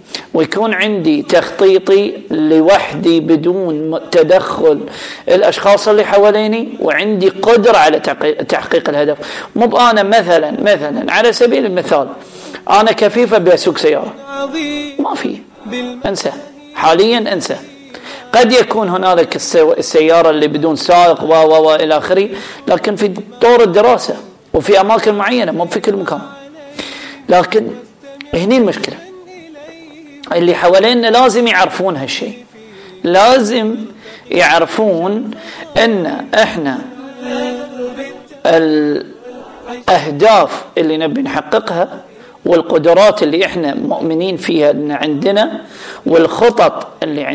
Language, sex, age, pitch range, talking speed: Arabic, male, 40-59, 170-250 Hz, 95 wpm